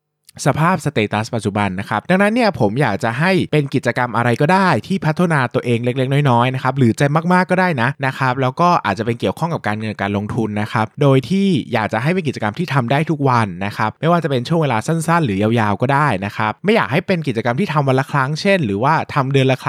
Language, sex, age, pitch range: Thai, male, 20-39, 110-160 Hz